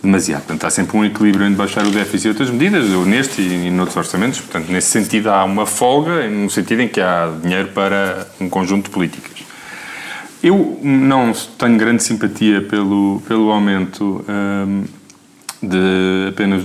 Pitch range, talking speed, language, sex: 95-115 Hz, 165 wpm, Portuguese, male